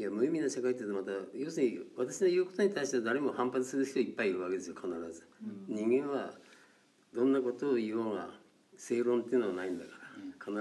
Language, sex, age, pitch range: Japanese, male, 50-69, 100-140 Hz